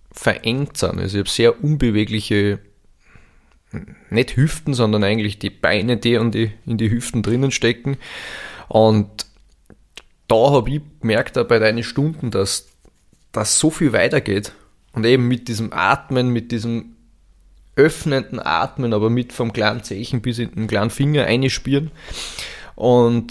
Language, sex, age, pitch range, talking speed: German, male, 20-39, 100-125 Hz, 145 wpm